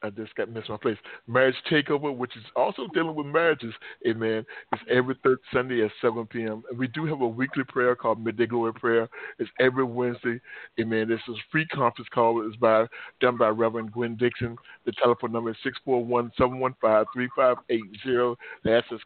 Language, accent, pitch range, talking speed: English, American, 115-130 Hz, 180 wpm